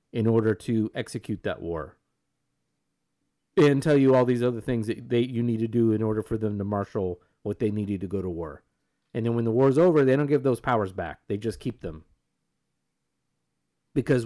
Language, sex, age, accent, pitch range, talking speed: English, male, 30-49, American, 100-125 Hz, 205 wpm